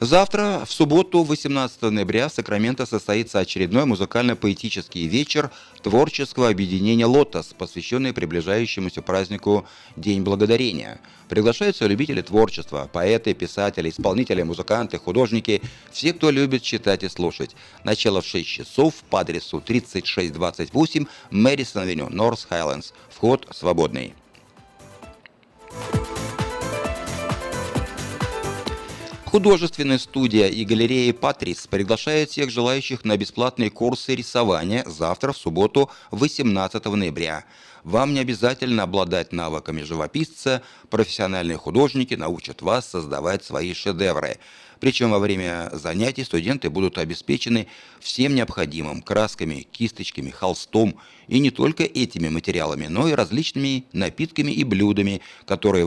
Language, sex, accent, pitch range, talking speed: Russian, male, native, 95-130 Hz, 105 wpm